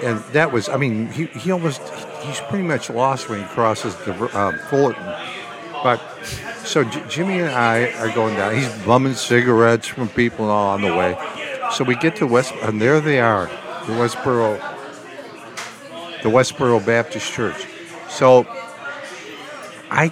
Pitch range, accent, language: 105-135 Hz, American, English